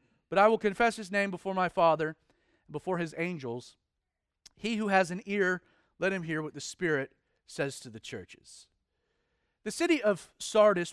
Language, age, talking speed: English, 40-59, 175 wpm